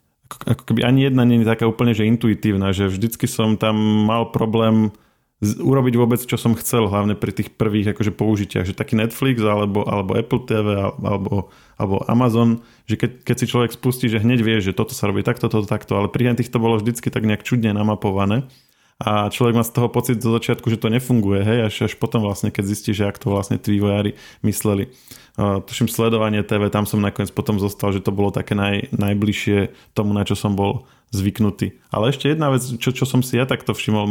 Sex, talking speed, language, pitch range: male, 210 wpm, Slovak, 105-120 Hz